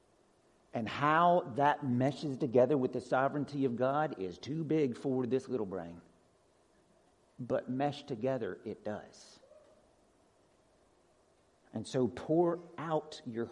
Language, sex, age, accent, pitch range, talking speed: English, male, 50-69, American, 125-170 Hz, 120 wpm